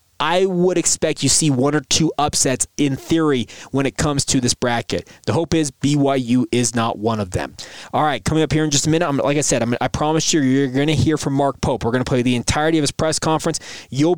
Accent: American